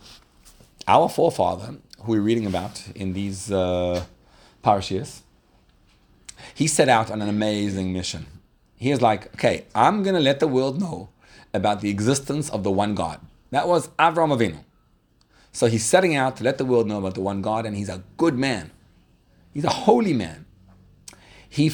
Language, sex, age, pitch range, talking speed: English, male, 30-49, 100-135 Hz, 170 wpm